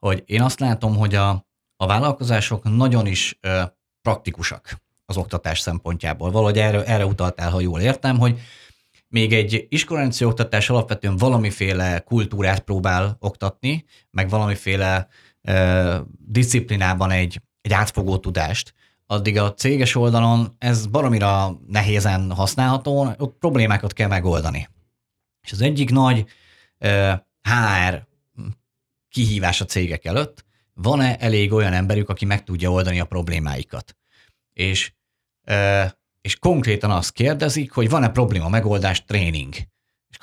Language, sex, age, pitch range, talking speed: Hungarian, male, 30-49, 95-120 Hz, 125 wpm